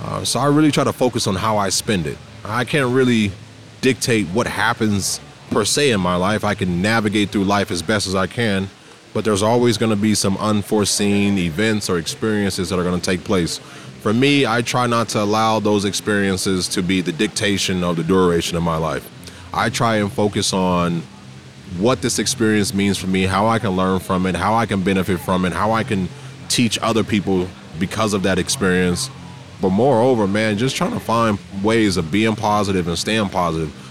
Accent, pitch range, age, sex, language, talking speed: American, 95-115 Hz, 20-39, male, English, 200 wpm